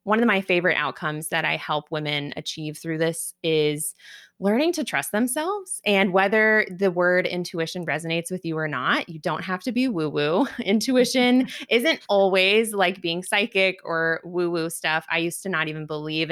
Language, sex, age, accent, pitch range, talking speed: English, female, 20-39, American, 160-200 Hz, 175 wpm